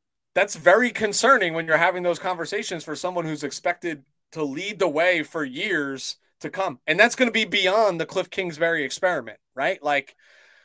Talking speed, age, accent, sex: 180 wpm, 30-49, American, male